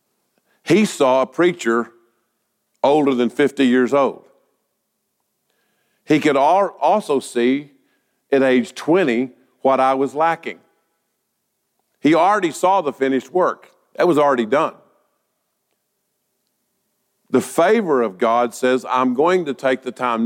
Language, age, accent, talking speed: English, 50-69, American, 120 wpm